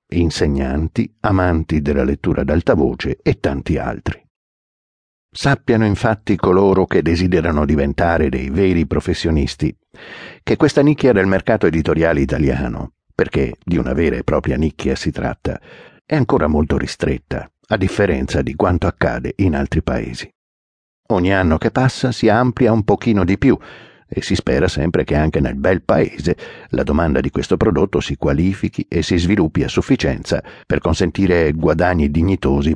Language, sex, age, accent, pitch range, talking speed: Italian, male, 60-79, native, 75-100 Hz, 150 wpm